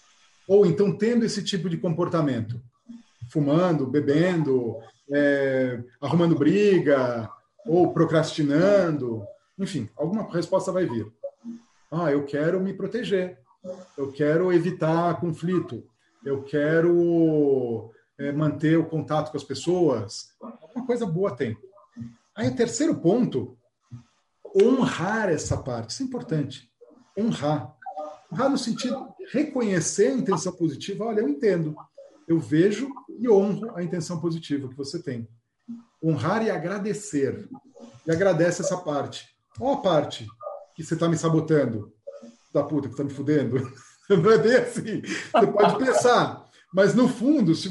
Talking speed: 130 wpm